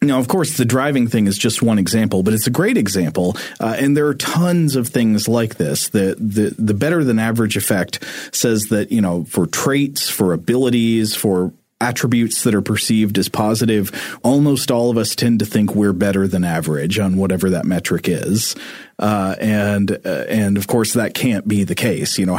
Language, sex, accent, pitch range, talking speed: English, male, American, 100-120 Hz, 200 wpm